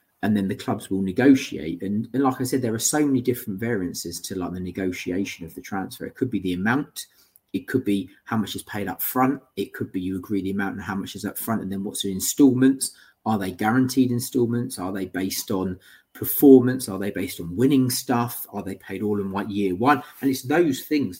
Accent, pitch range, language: British, 95-125 Hz, English